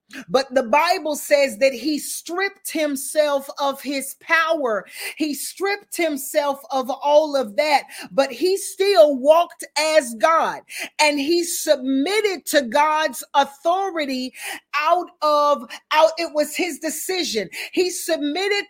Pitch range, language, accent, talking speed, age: 270-320 Hz, English, American, 125 wpm, 40-59